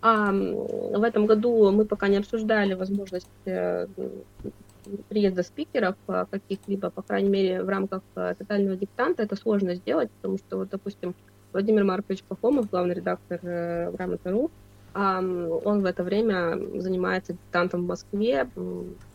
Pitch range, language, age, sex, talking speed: 160-210 Hz, Russian, 20-39, female, 125 wpm